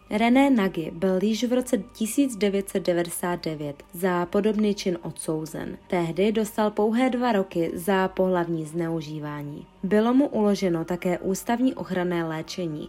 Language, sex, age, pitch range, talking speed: Czech, female, 20-39, 170-215 Hz, 120 wpm